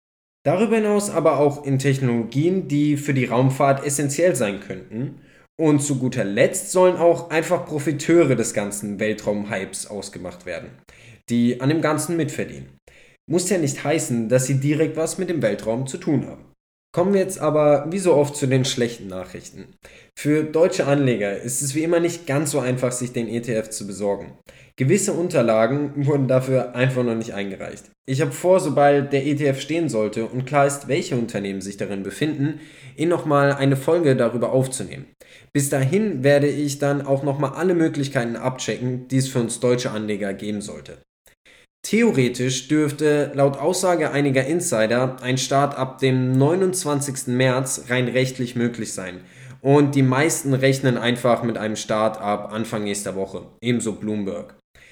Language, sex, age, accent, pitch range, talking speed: German, male, 10-29, German, 120-150 Hz, 165 wpm